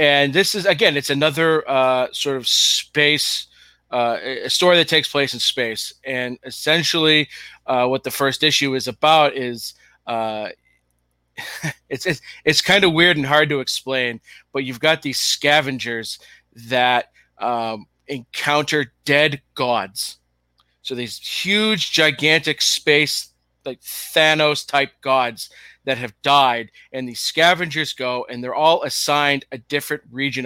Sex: male